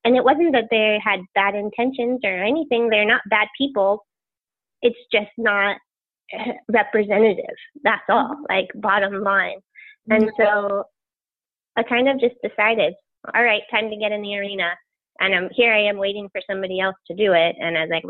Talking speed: 180 wpm